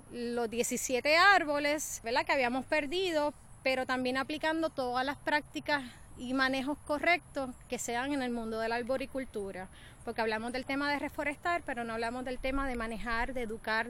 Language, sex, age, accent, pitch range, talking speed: Spanish, female, 20-39, American, 240-295 Hz, 170 wpm